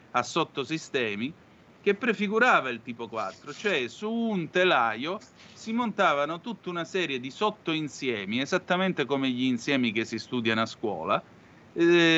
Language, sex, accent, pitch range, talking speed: Italian, male, native, 115-170 Hz, 140 wpm